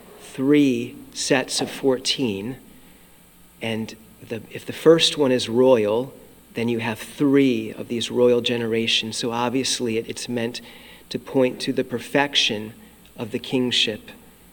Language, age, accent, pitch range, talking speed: English, 40-59, American, 115-130 Hz, 130 wpm